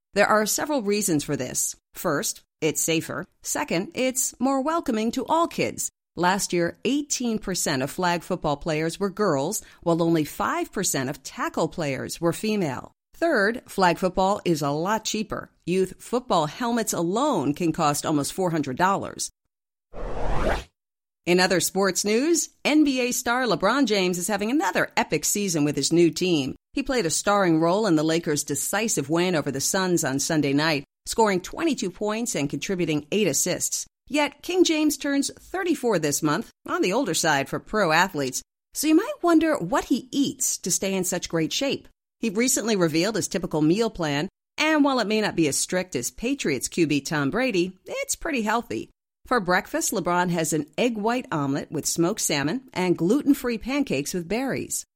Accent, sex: American, female